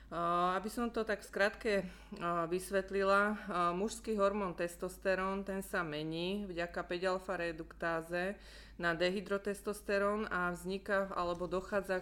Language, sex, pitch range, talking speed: Slovak, female, 175-200 Hz, 105 wpm